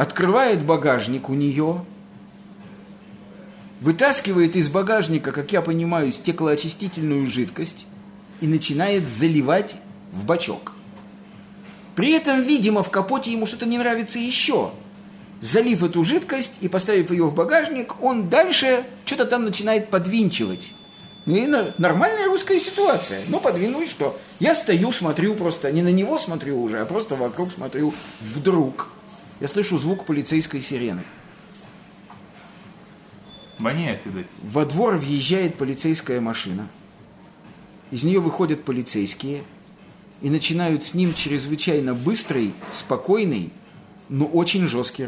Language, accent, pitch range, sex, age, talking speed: Russian, native, 145-200 Hz, male, 50-69, 115 wpm